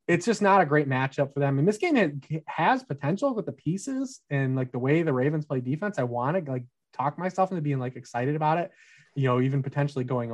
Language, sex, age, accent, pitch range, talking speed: English, male, 20-39, American, 125-150 Hz, 240 wpm